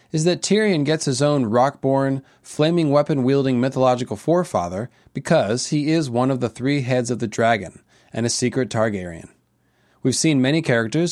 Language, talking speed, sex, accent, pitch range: English, 155 wpm, male, American, 115-155 Hz